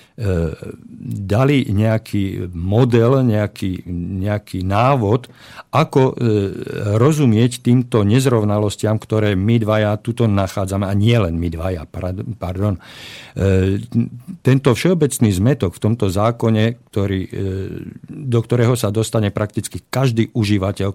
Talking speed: 95 wpm